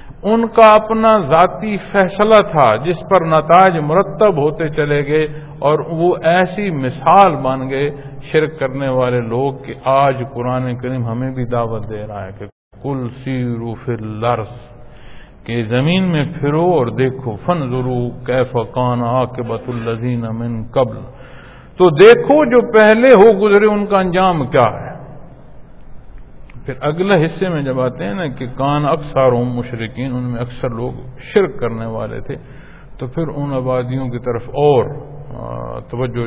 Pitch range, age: 115-150 Hz, 50-69